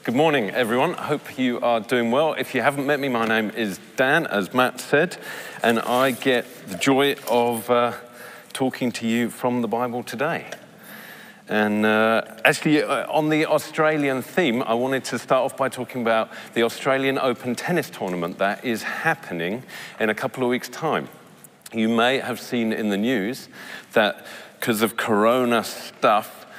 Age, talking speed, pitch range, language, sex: 40-59, 175 wpm, 100-125 Hz, English, male